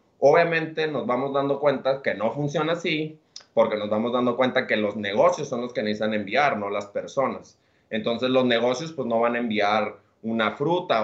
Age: 30-49